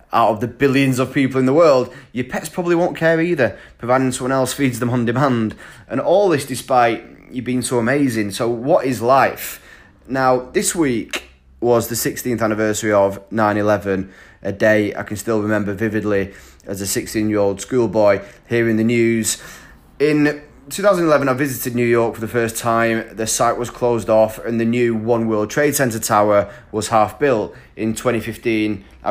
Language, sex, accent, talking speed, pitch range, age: English, male, British, 175 wpm, 110-125 Hz, 20-39